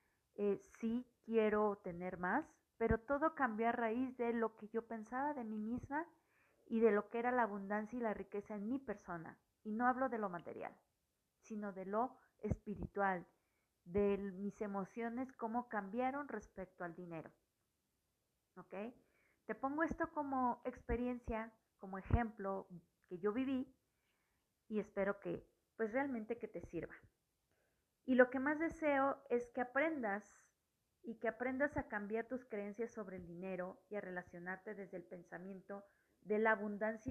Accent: Mexican